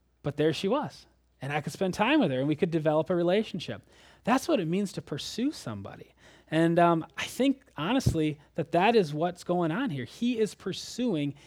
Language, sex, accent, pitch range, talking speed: English, male, American, 145-215 Hz, 205 wpm